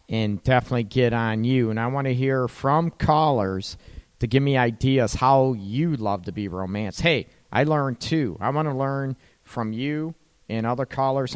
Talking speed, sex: 185 wpm, male